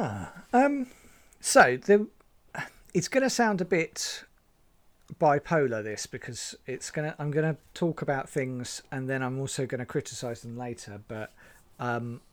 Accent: British